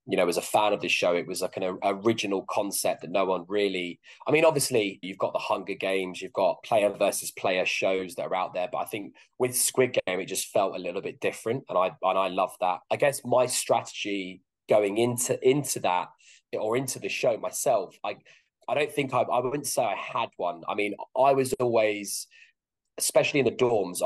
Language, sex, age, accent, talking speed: English, male, 20-39, British, 220 wpm